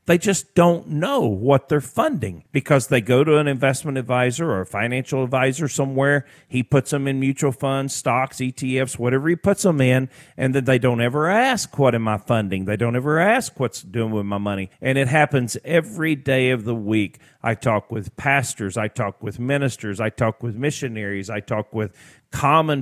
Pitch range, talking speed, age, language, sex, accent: 120-140 Hz, 195 wpm, 50-69, English, male, American